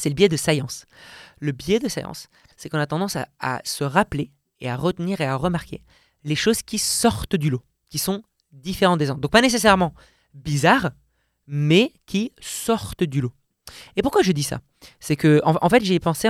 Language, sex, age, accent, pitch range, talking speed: French, male, 20-39, French, 140-185 Hz, 200 wpm